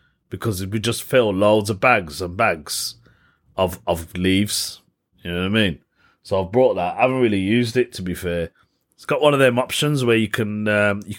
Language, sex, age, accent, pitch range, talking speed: English, male, 30-49, British, 100-145 Hz, 215 wpm